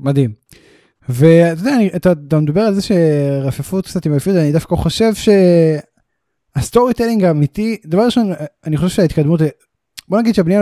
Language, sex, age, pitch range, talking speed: Hebrew, male, 10-29, 150-195 Hz, 155 wpm